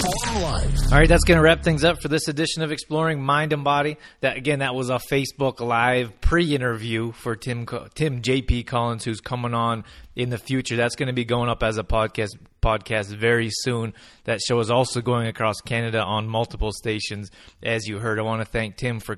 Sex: male